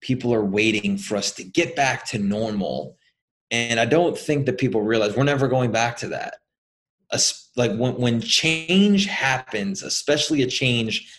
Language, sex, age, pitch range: English, male, 30-49, 110-145 Hz